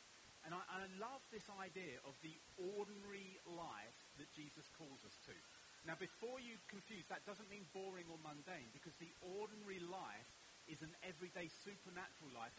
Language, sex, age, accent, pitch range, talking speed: English, male, 40-59, British, 150-190 Hz, 160 wpm